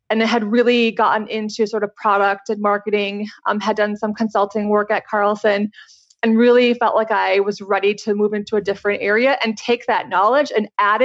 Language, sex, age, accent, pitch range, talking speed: English, female, 20-39, American, 205-240 Hz, 205 wpm